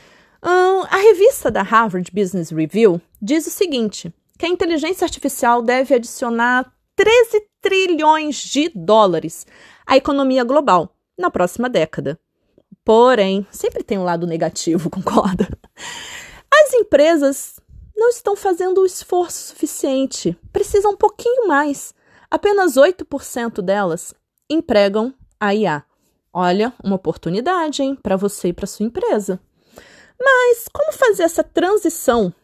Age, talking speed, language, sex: 30-49, 120 wpm, Portuguese, female